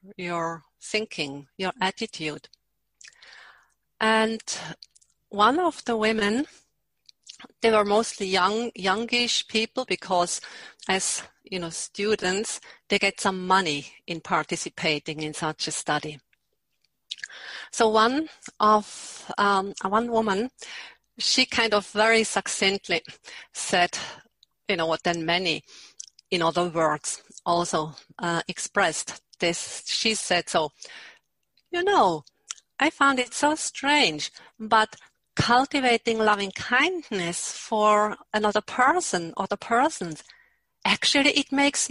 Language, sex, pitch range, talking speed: English, female, 175-245 Hz, 110 wpm